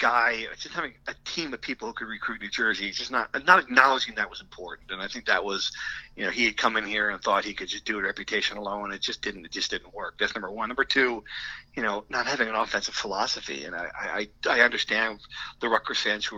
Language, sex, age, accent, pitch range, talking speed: English, male, 50-69, American, 135-195 Hz, 250 wpm